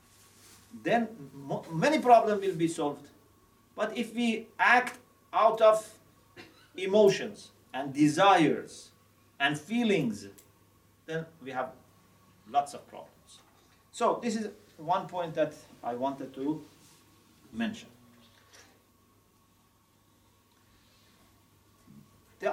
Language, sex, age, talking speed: English, male, 40-59, 90 wpm